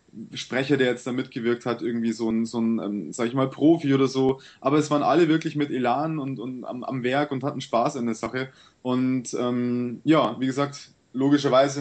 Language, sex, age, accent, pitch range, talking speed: German, male, 20-39, German, 120-145 Hz, 210 wpm